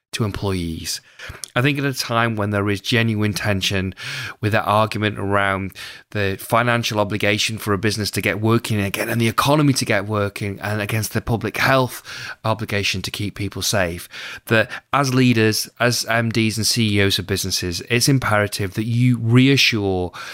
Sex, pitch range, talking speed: male, 95-120 Hz, 160 wpm